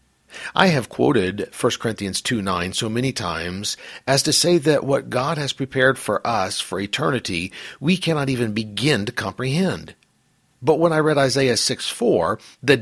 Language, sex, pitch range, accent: English, male, 105-145 Hz, American